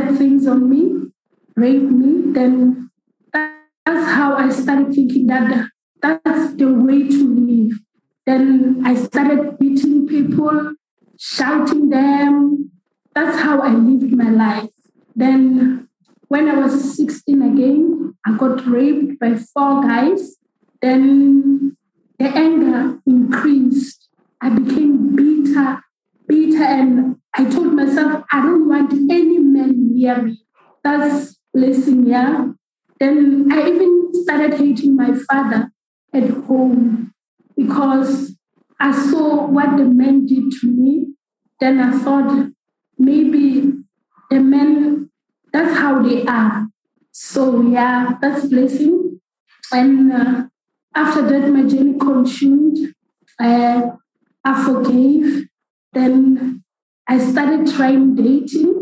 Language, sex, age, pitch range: English, female, 20-39, 255-290 Hz